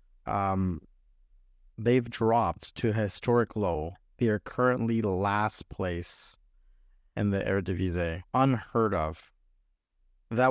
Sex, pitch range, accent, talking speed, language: male, 90-120 Hz, American, 105 wpm, English